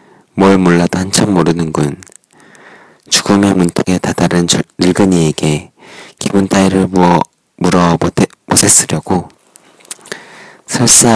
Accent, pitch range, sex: native, 85-95 Hz, male